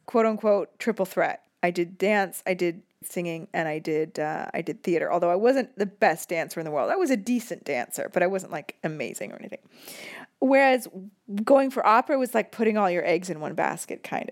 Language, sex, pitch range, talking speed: English, female, 185-240 Hz, 210 wpm